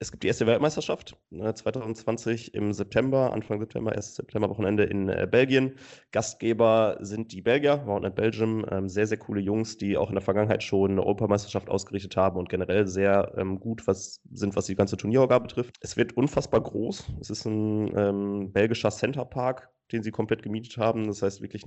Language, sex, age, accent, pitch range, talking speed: German, male, 20-39, German, 95-110 Hz, 175 wpm